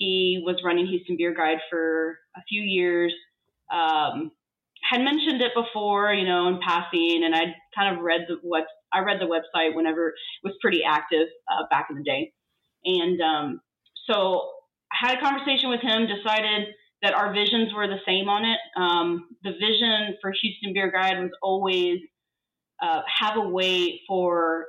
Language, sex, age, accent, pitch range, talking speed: English, female, 20-39, American, 175-225 Hz, 175 wpm